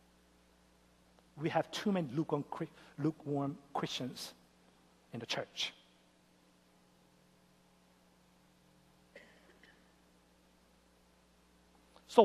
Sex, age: male, 60-79